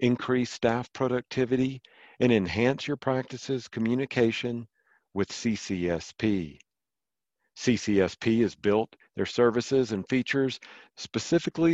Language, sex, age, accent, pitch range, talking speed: English, male, 50-69, American, 105-135 Hz, 90 wpm